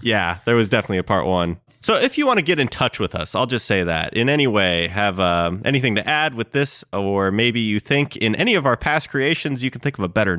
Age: 30-49